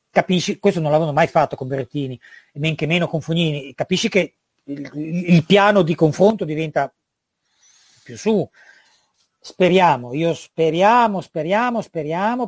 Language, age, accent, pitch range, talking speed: Italian, 40-59, native, 145-180 Hz, 135 wpm